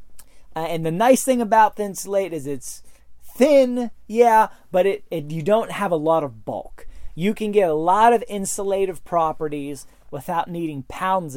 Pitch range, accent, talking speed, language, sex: 140-205 Hz, American, 175 wpm, English, male